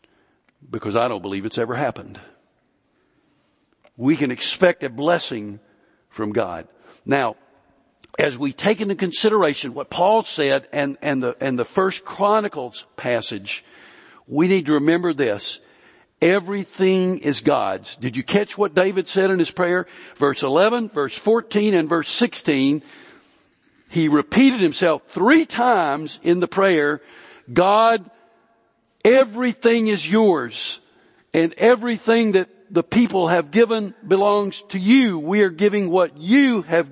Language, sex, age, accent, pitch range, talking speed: English, male, 60-79, American, 165-220 Hz, 135 wpm